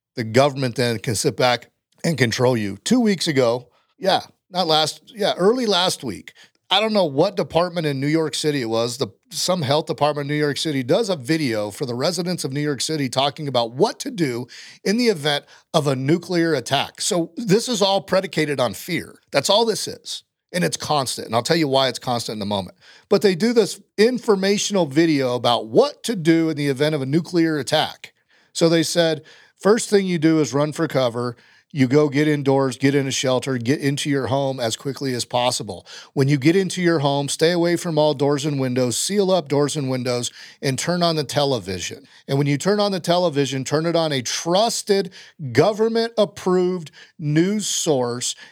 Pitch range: 135-170 Hz